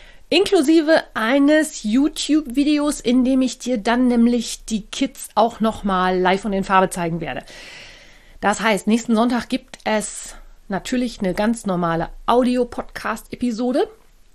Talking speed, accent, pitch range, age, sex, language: 125 wpm, German, 190-245 Hz, 40-59, female, German